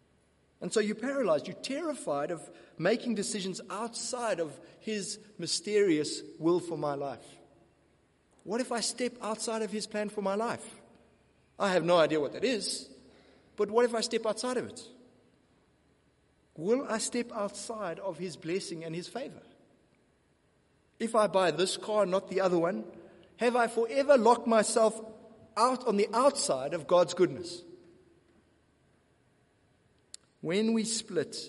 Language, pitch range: English, 140-220 Hz